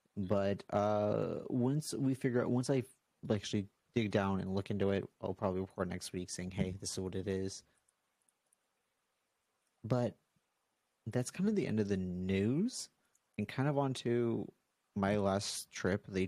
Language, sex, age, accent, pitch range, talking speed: English, male, 30-49, American, 95-110 Hz, 160 wpm